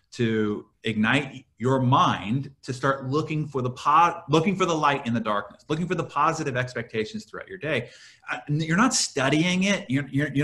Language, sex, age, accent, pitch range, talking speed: English, male, 30-49, American, 115-145 Hz, 170 wpm